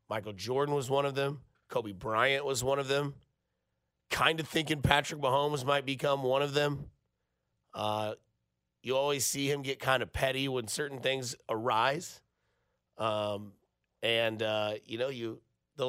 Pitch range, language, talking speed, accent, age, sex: 115-145 Hz, English, 160 wpm, American, 30-49, male